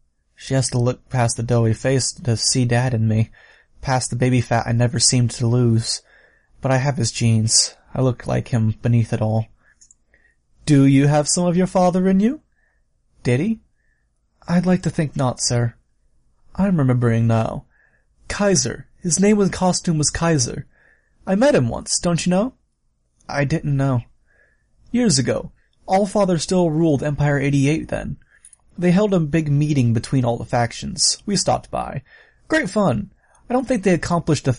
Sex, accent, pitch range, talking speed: male, American, 120-175 Hz, 175 wpm